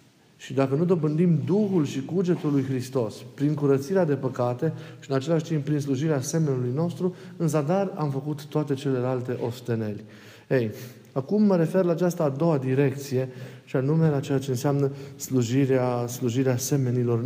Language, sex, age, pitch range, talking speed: Romanian, male, 40-59, 130-165 Hz, 160 wpm